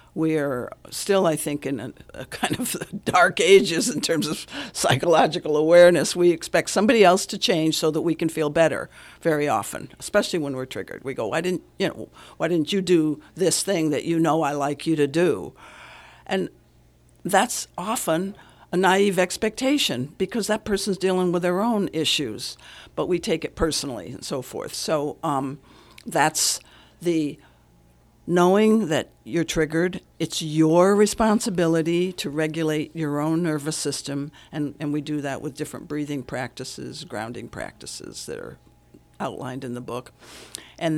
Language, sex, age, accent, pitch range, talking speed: English, female, 60-79, American, 145-180 Hz, 160 wpm